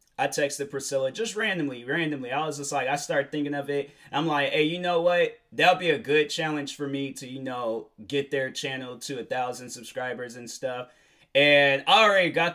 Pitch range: 135-160 Hz